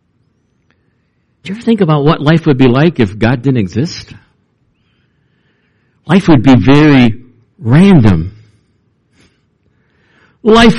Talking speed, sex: 110 wpm, male